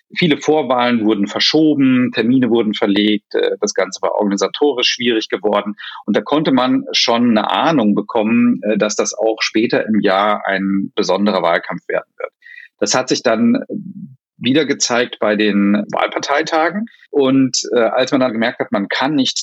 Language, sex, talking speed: German, male, 160 wpm